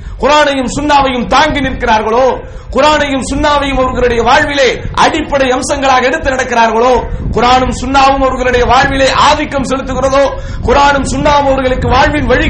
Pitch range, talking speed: 235-285 Hz, 70 wpm